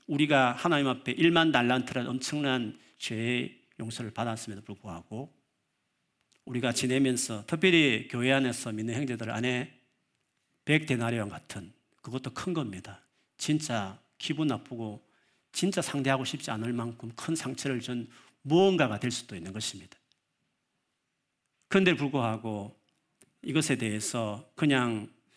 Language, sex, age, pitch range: Korean, male, 40-59, 115-145 Hz